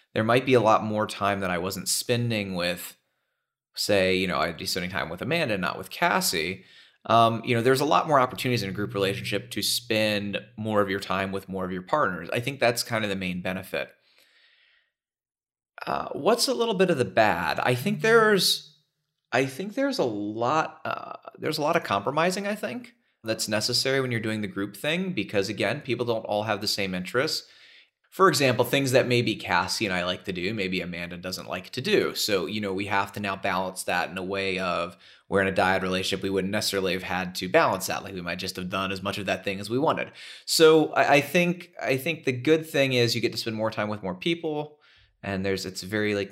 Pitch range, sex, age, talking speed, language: 95-130 Hz, male, 30-49, 230 wpm, English